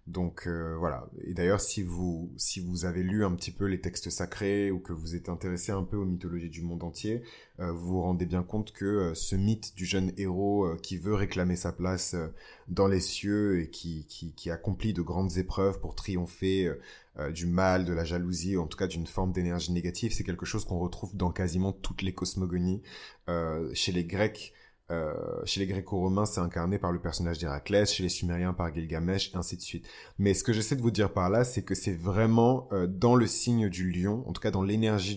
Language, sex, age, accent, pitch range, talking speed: French, male, 20-39, French, 90-105 Hz, 225 wpm